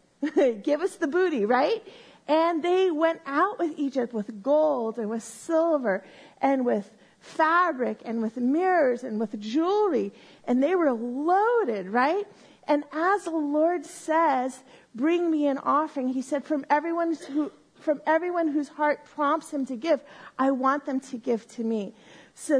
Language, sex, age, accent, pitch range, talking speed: English, female, 40-59, American, 245-305 Hz, 160 wpm